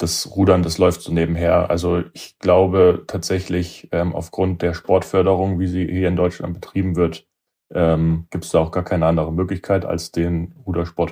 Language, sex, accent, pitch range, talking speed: German, male, German, 85-95 Hz, 180 wpm